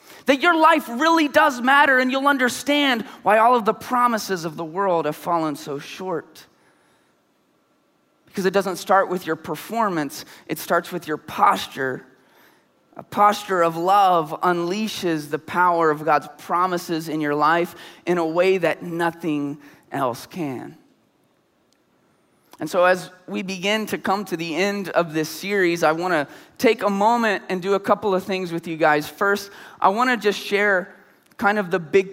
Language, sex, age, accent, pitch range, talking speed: English, male, 20-39, American, 180-260 Hz, 165 wpm